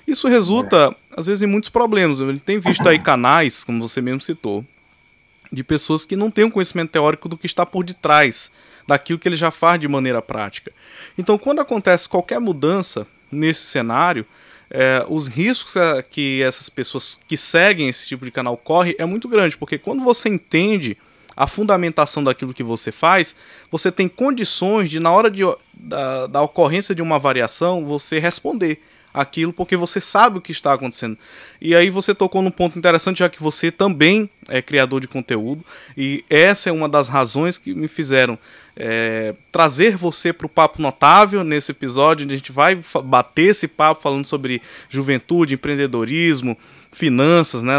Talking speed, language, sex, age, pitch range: 170 wpm, Portuguese, male, 20-39, 135-180 Hz